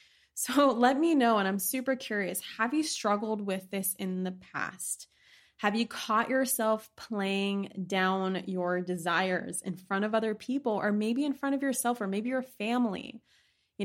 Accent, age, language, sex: American, 20-39, English, female